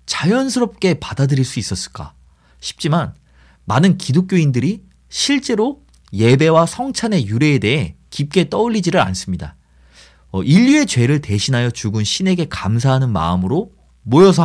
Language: Korean